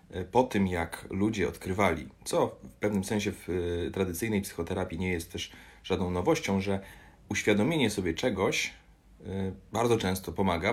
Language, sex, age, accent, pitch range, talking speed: Polish, male, 30-49, native, 90-105 Hz, 135 wpm